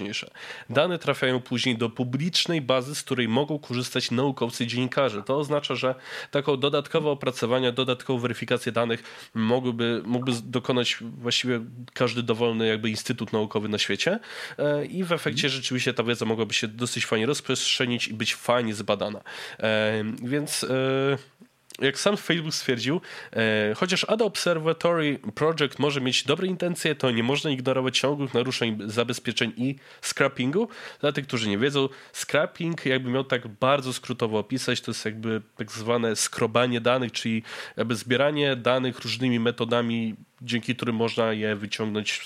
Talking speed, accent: 140 wpm, native